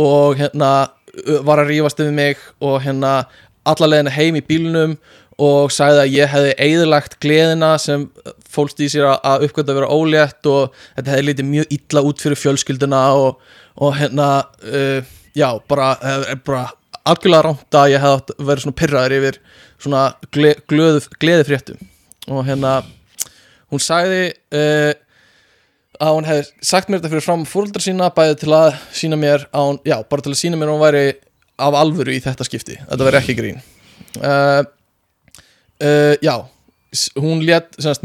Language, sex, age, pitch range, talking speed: English, male, 20-39, 135-150 Hz, 160 wpm